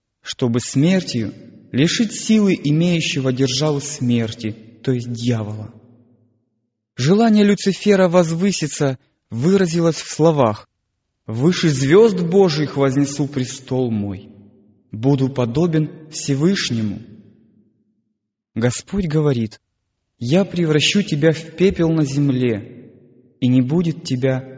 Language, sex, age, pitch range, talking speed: Russian, male, 20-39, 115-165 Hz, 95 wpm